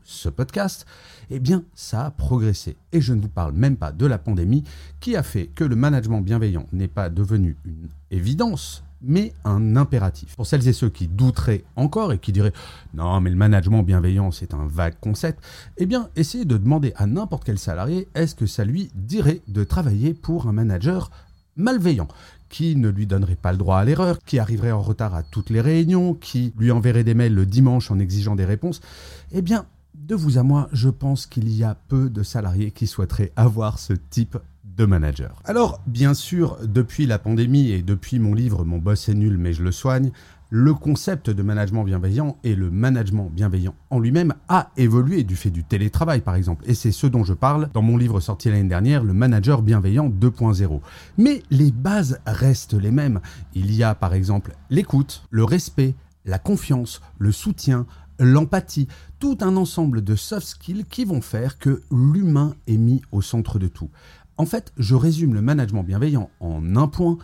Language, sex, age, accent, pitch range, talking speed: French, male, 30-49, French, 95-140 Hz, 200 wpm